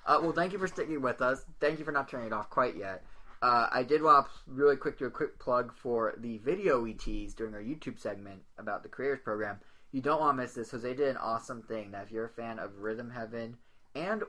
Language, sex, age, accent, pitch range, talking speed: English, male, 20-39, American, 110-130 Hz, 255 wpm